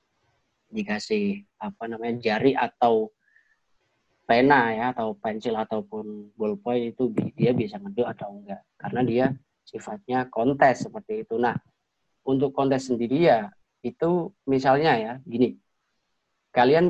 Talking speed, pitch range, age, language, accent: 115 wpm, 120-145 Hz, 30-49, Indonesian, native